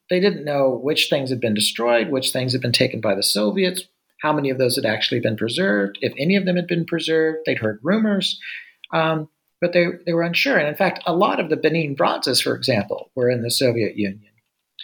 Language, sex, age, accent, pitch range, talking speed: English, male, 50-69, American, 125-180 Hz, 225 wpm